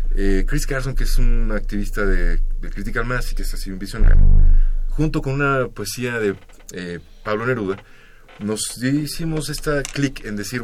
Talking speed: 175 wpm